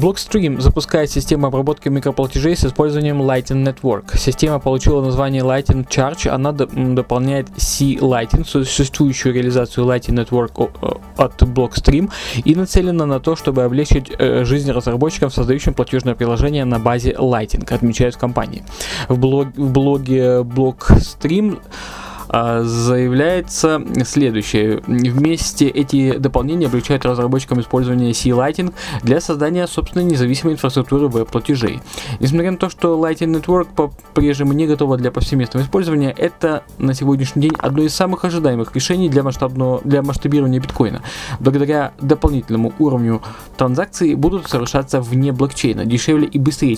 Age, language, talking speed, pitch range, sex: 20-39, Russian, 125 wpm, 125-150 Hz, male